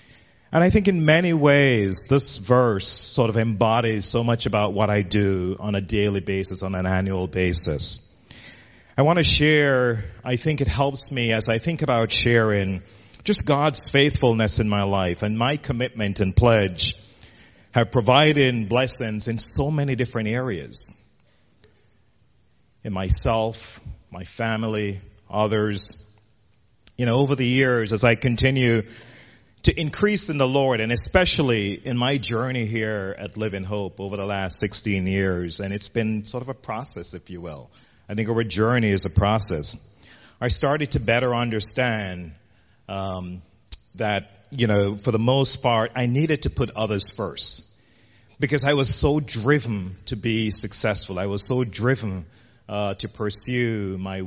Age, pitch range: 40-59, 100-125 Hz